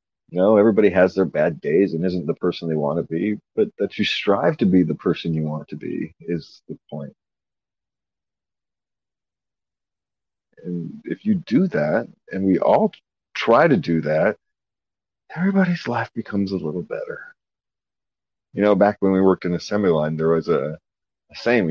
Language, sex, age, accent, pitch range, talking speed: English, male, 40-59, American, 90-150 Hz, 175 wpm